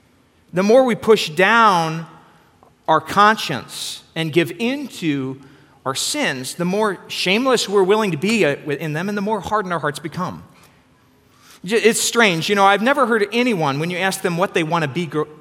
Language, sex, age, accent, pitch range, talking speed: English, male, 40-59, American, 150-205 Hz, 180 wpm